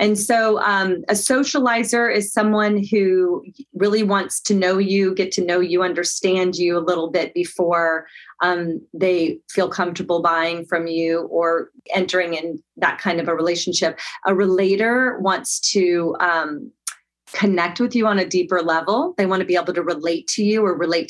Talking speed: 175 wpm